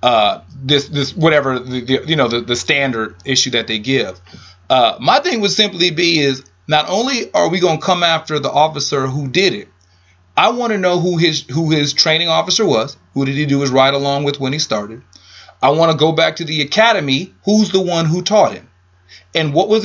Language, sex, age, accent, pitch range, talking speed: English, male, 30-49, American, 130-190 Hz, 225 wpm